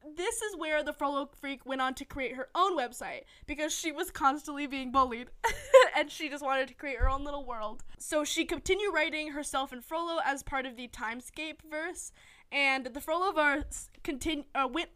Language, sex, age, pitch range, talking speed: English, female, 10-29, 255-315 Hz, 195 wpm